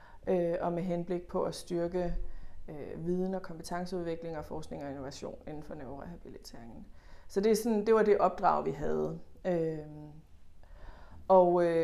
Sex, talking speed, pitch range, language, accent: female, 135 wpm, 150-180 Hz, Danish, native